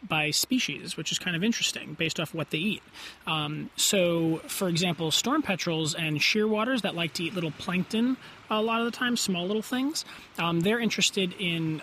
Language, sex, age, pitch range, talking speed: English, male, 30-49, 155-205 Hz, 195 wpm